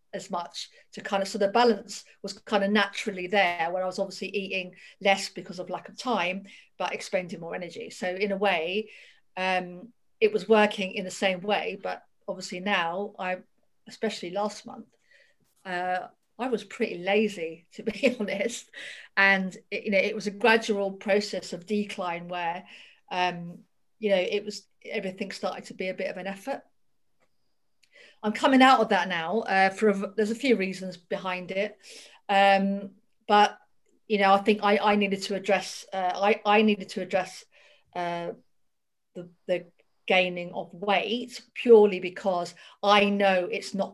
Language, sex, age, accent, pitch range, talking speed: English, female, 40-59, British, 185-210 Hz, 175 wpm